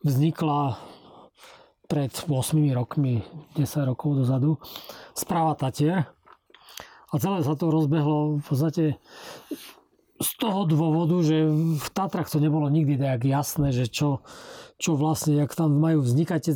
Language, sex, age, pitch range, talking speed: Slovak, male, 40-59, 135-160 Hz, 120 wpm